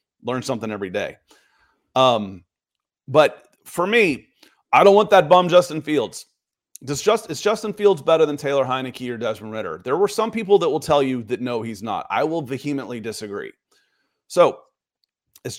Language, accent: English, American